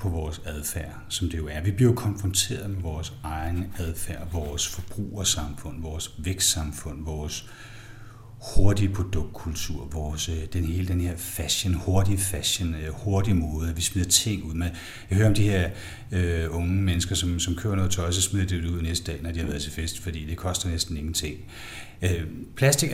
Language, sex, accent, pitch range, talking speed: Danish, male, native, 85-105 Hz, 175 wpm